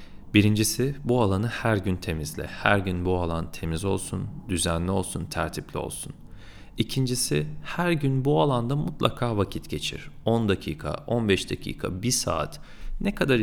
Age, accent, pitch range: 40-59, native, 90-130 Hz